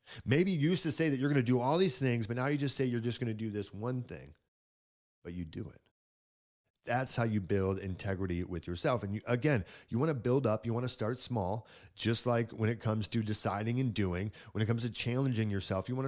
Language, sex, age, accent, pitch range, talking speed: English, male, 30-49, American, 95-115 Hz, 245 wpm